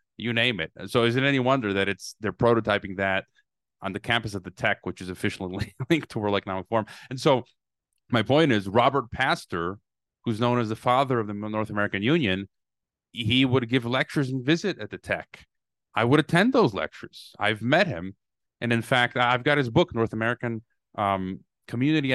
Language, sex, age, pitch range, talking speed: English, male, 30-49, 100-125 Hz, 195 wpm